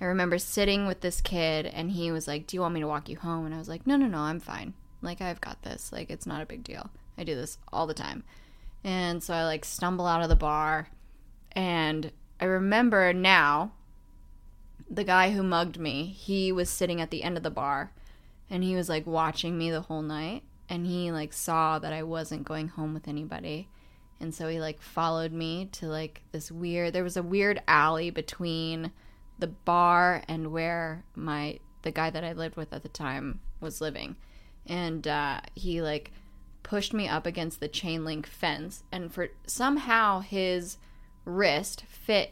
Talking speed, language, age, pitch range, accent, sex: 200 wpm, English, 20-39, 155-180 Hz, American, female